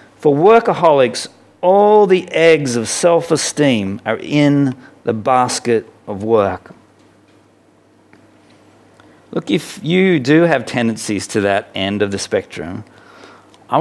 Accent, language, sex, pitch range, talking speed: Australian, English, male, 125-170 Hz, 115 wpm